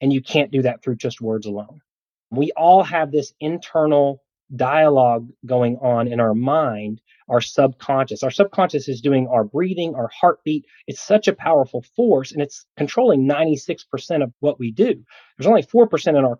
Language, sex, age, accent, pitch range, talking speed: English, male, 30-49, American, 125-165 Hz, 175 wpm